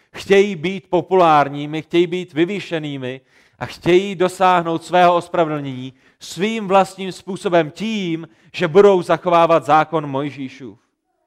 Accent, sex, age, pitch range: native, male, 40-59, 155-200 Hz